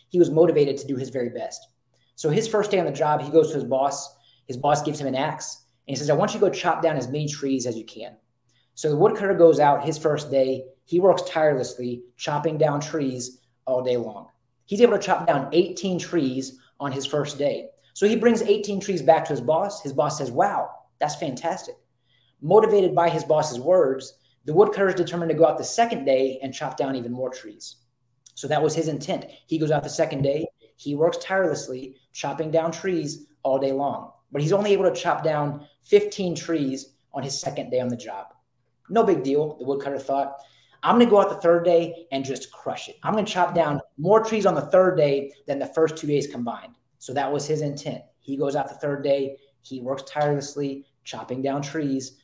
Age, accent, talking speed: 20-39, American, 225 wpm